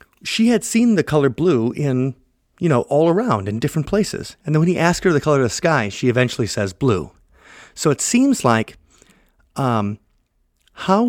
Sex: male